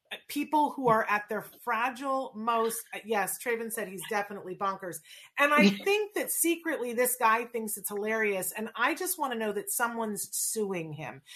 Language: English